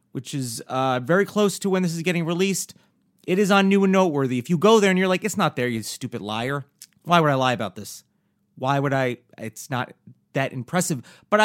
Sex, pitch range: male, 135-190 Hz